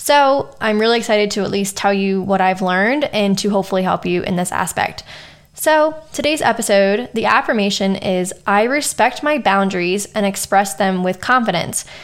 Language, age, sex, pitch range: English, 10-29, female, 195-230 Hz